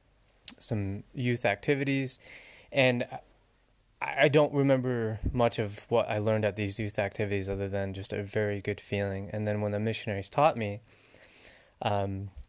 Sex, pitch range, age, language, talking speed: male, 100-120 Hz, 20-39, English, 150 wpm